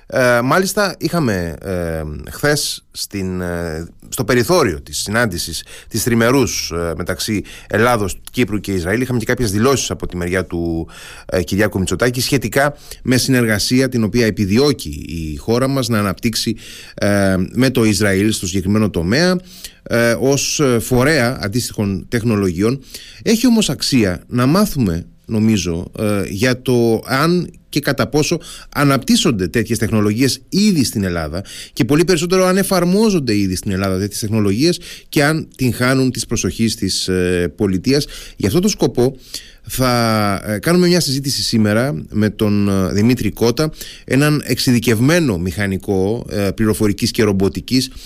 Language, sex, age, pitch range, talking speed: Greek, male, 30-49, 100-130 Hz, 135 wpm